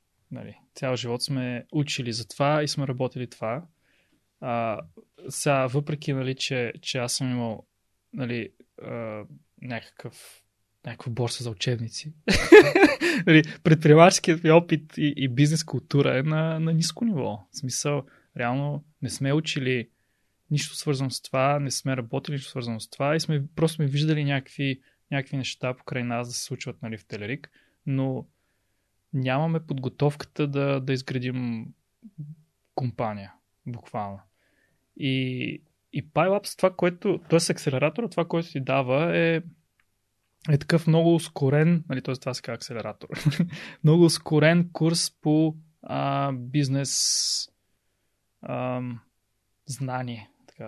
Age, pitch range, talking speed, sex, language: 20-39, 120-155 Hz, 130 wpm, male, Bulgarian